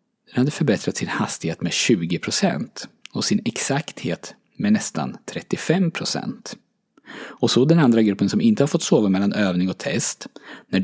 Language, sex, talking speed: Swedish, male, 155 wpm